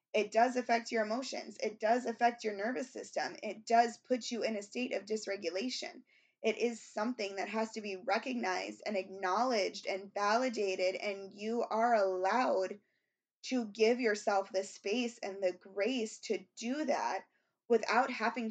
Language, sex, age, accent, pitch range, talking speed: English, female, 20-39, American, 195-230 Hz, 160 wpm